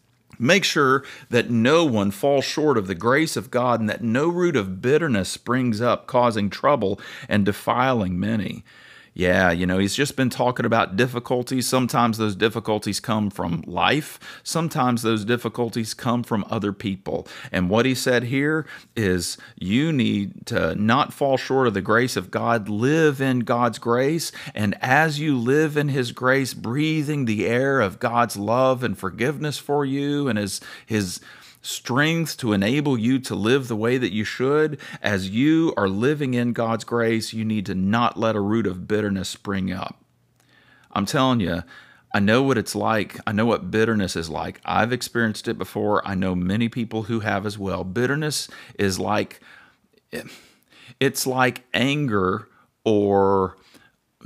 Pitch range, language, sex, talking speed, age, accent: 100-130 Hz, English, male, 165 wpm, 40-59, American